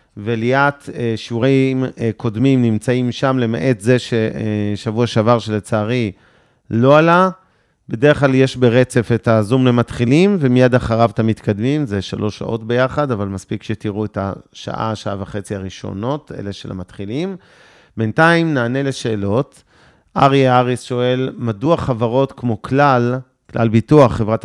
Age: 40-59